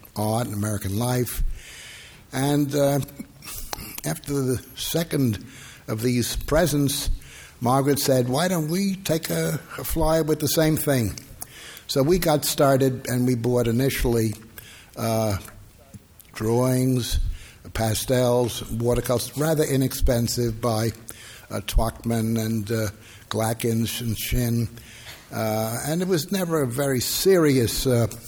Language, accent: English, American